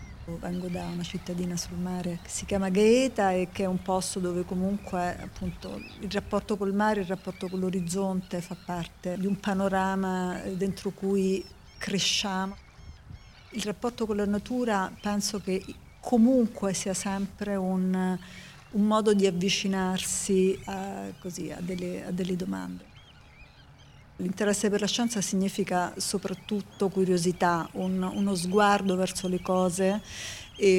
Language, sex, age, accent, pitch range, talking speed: Italian, female, 50-69, native, 180-205 Hz, 135 wpm